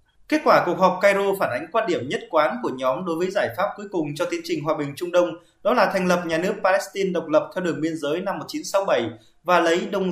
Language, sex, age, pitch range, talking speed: Vietnamese, male, 20-39, 160-200 Hz, 260 wpm